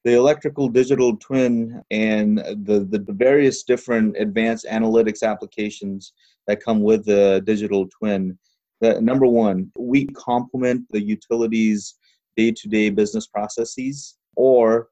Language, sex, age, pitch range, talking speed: English, male, 30-49, 110-130 Hz, 115 wpm